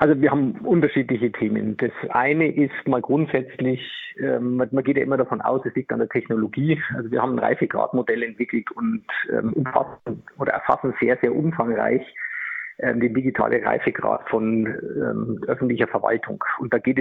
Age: 50-69